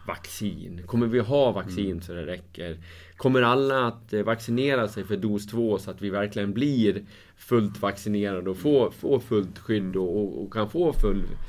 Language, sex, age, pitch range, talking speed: Swedish, male, 30-49, 100-125 Hz, 160 wpm